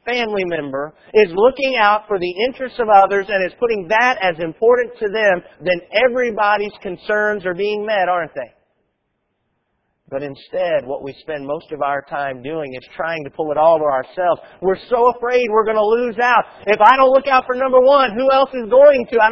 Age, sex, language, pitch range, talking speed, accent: 40-59, male, English, 140-230 Hz, 205 wpm, American